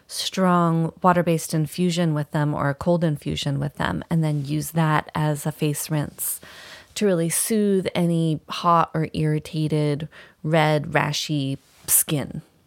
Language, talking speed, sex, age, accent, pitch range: English, 135 wpm, female, 30-49, American, 155-185 Hz